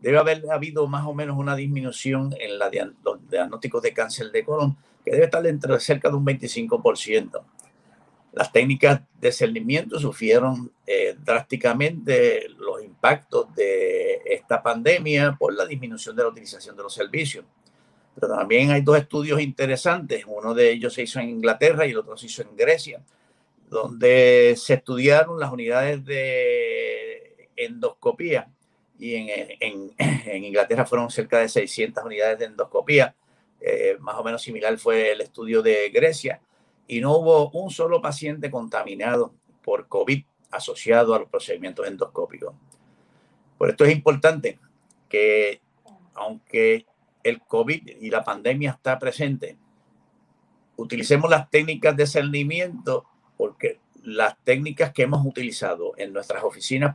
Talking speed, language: 140 wpm, Spanish